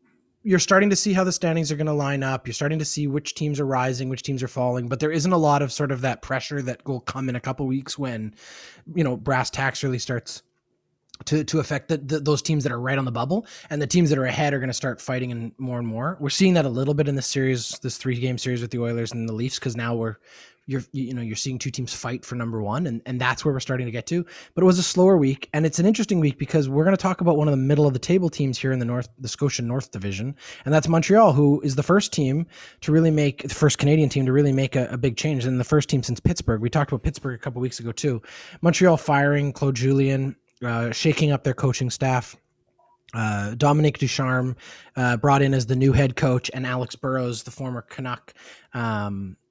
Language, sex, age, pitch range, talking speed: English, male, 20-39, 125-150 Hz, 260 wpm